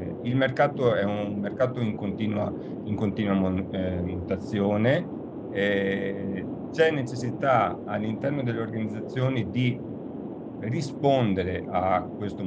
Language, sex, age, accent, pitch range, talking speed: Italian, male, 40-59, native, 95-130 Hz, 95 wpm